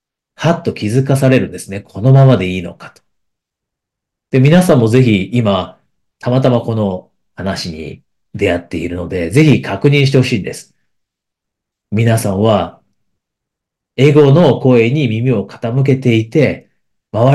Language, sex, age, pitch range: Japanese, male, 40-59, 100-135 Hz